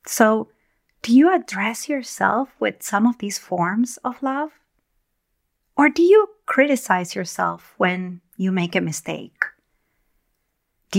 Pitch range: 195-265 Hz